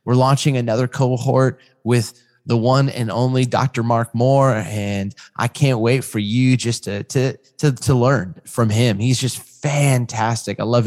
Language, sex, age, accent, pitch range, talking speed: English, male, 20-39, American, 110-130 Hz, 170 wpm